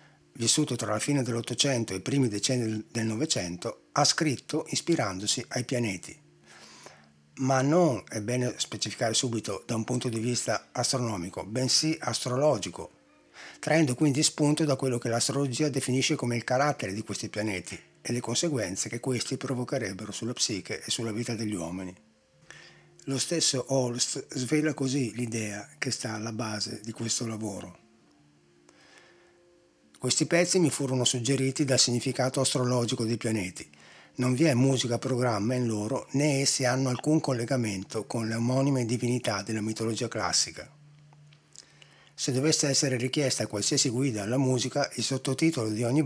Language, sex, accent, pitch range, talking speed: Italian, male, native, 110-135 Hz, 145 wpm